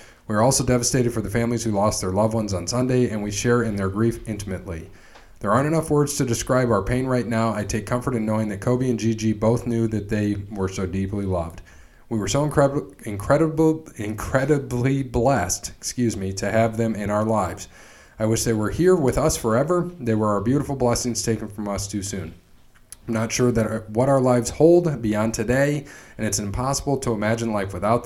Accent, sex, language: American, male, English